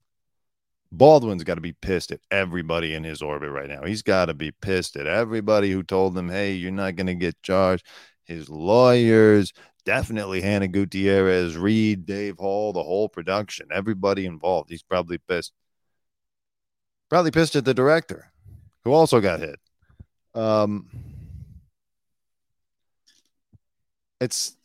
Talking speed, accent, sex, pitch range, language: 135 wpm, American, male, 85-110 Hz, English